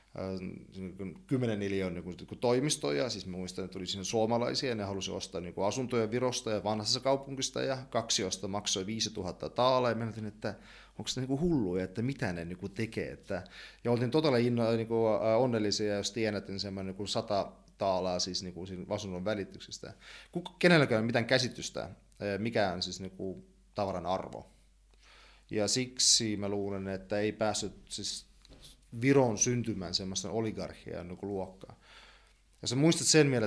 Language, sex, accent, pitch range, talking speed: Finnish, male, native, 95-125 Hz, 135 wpm